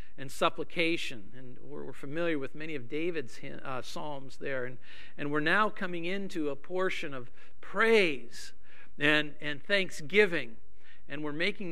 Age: 50-69